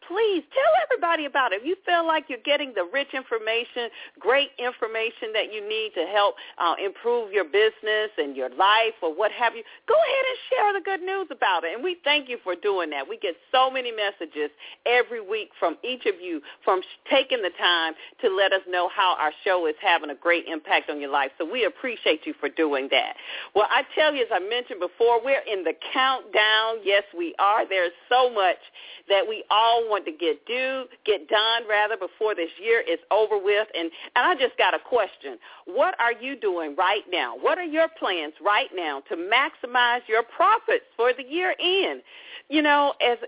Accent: American